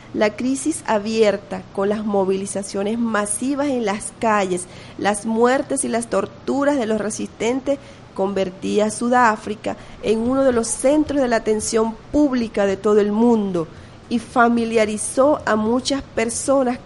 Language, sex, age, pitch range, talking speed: Spanish, female, 30-49, 200-235 Hz, 140 wpm